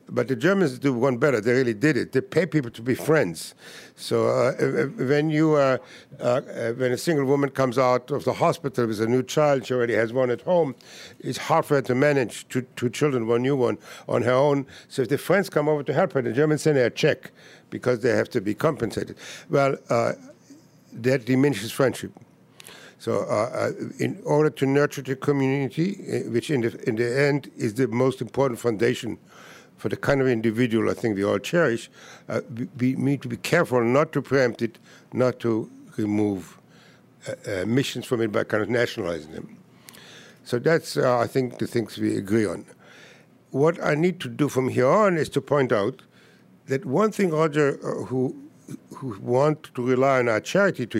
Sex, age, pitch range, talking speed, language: male, 60-79, 120-145 Hz, 205 wpm, English